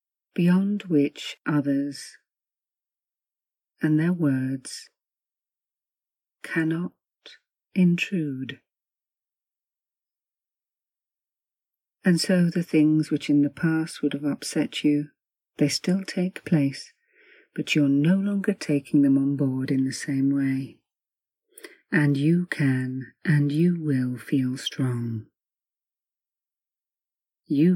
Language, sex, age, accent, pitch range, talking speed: English, female, 40-59, British, 140-170 Hz, 95 wpm